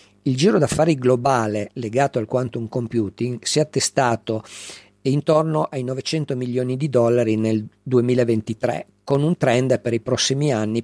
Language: Italian